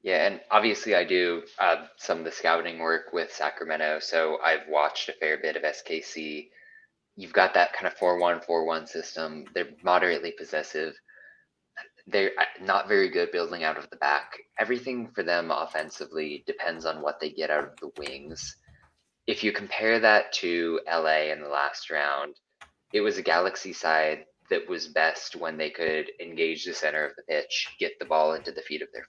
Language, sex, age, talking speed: English, male, 20-39, 190 wpm